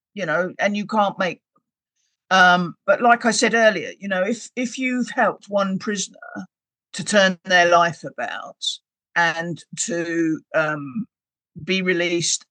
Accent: British